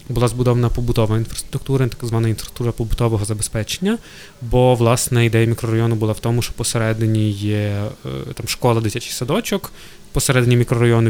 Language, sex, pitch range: Ukrainian, male, 110-130 Hz